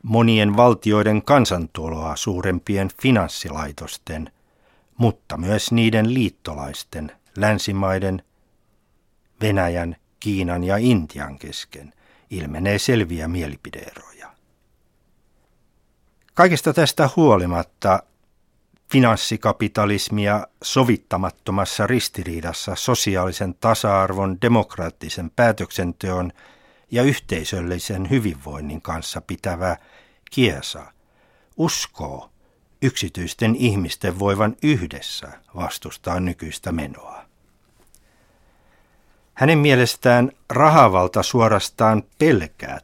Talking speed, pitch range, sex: 65 wpm, 90-115 Hz, male